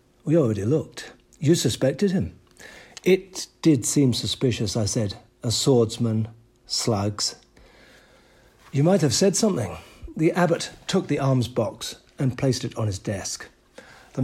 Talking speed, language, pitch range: 140 wpm, English, 110-145 Hz